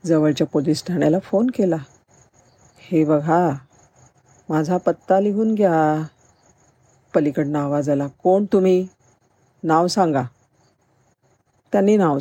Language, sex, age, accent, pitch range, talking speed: Marathi, female, 50-69, native, 140-190 Hz, 100 wpm